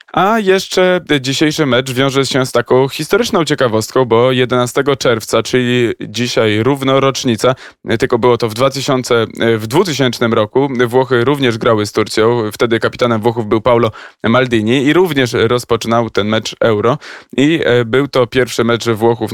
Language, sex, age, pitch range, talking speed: Polish, male, 20-39, 115-130 Hz, 145 wpm